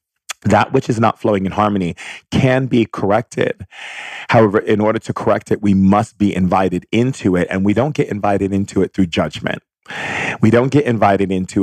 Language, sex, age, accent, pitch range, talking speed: English, male, 40-59, American, 95-110 Hz, 185 wpm